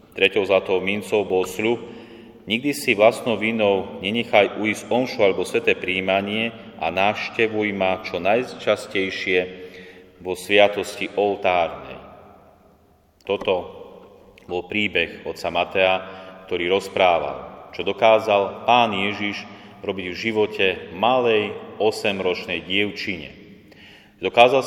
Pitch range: 95-110 Hz